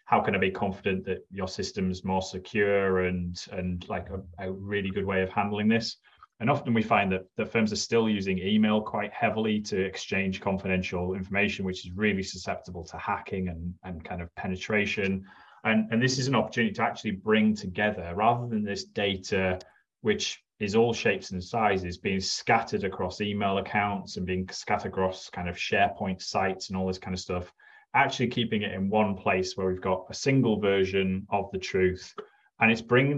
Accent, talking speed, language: British, 195 wpm, English